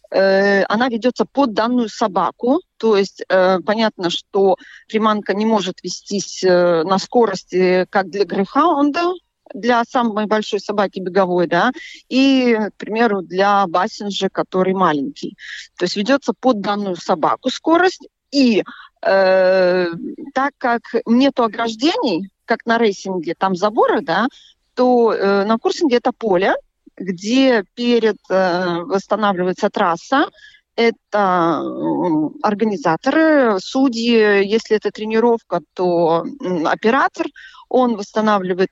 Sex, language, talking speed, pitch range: female, Russian, 115 wpm, 190-255 Hz